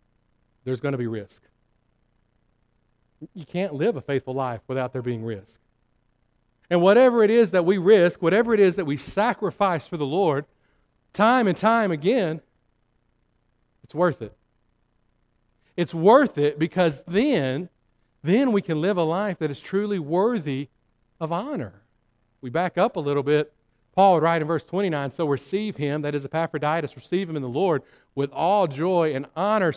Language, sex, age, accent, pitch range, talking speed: English, male, 50-69, American, 125-195 Hz, 165 wpm